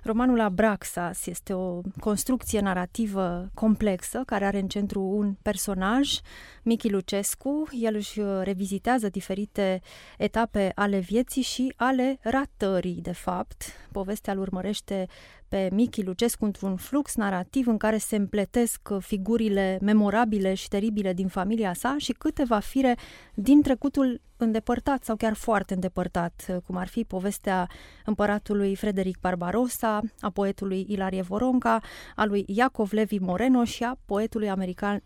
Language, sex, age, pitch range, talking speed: Romanian, female, 20-39, 195-245 Hz, 130 wpm